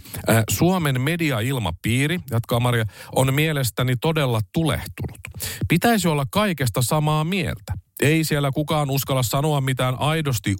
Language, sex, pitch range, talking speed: Finnish, male, 95-130 Hz, 115 wpm